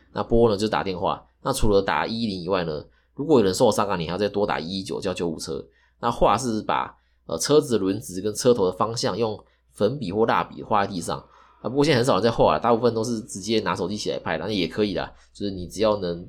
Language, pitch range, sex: Chinese, 95-125 Hz, male